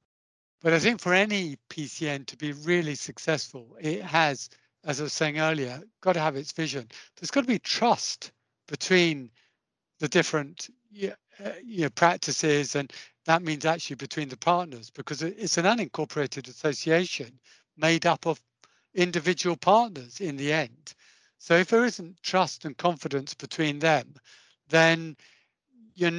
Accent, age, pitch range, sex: British, 60-79, 145-170 Hz, male